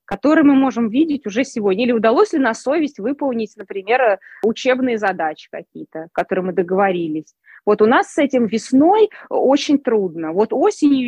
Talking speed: 155 wpm